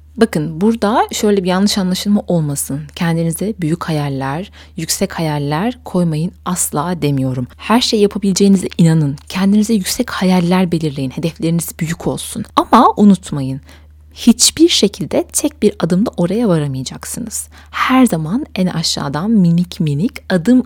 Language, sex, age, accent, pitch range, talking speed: Turkish, female, 30-49, native, 150-205 Hz, 120 wpm